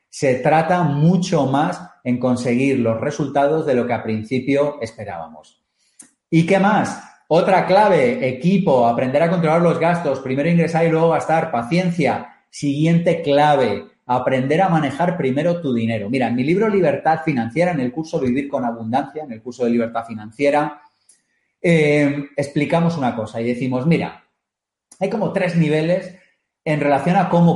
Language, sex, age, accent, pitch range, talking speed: Spanish, male, 30-49, Spanish, 120-160 Hz, 155 wpm